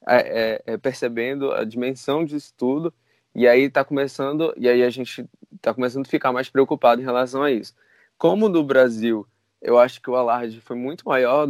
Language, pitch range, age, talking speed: Portuguese, 120-150 Hz, 20-39, 195 wpm